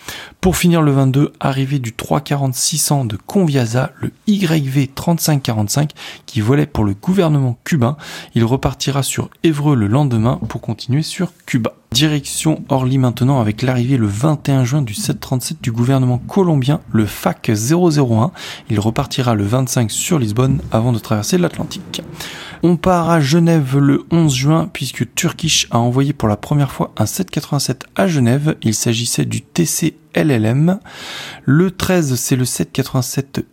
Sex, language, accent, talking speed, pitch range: male, French, French, 145 wpm, 120-155 Hz